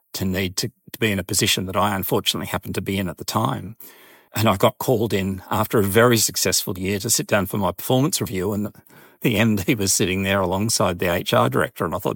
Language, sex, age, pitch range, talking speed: English, male, 40-59, 95-110 Hz, 240 wpm